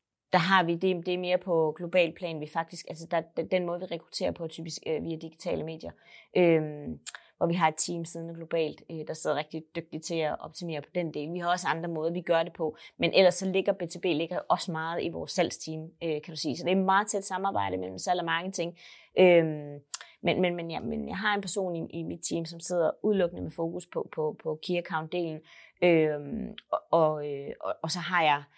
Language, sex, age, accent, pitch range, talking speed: Danish, female, 30-49, native, 155-175 Hz, 225 wpm